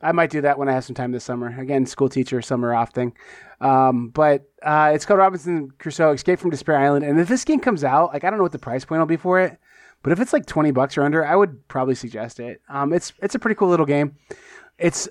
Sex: male